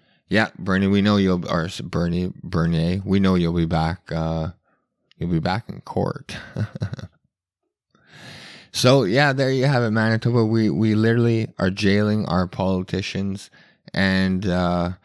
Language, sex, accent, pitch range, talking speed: English, male, American, 90-115 Hz, 135 wpm